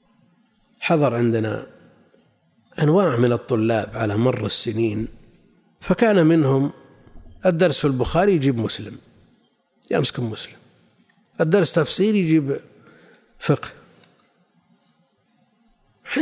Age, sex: 60-79, male